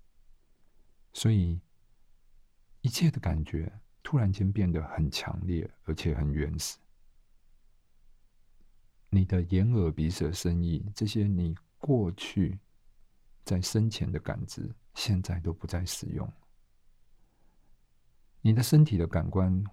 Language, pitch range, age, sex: Chinese, 85-105 Hz, 50-69, male